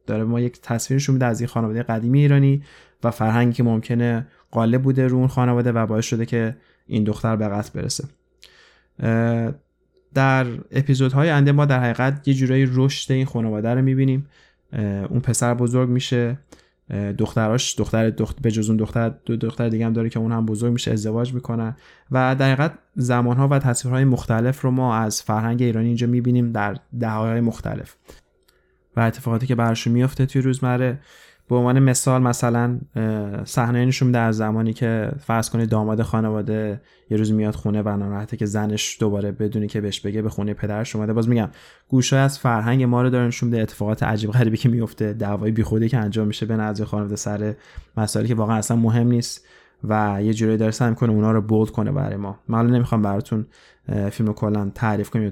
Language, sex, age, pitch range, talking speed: Persian, male, 20-39, 110-125 Hz, 180 wpm